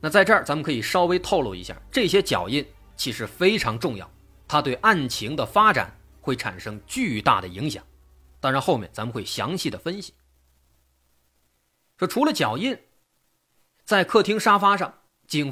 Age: 30-49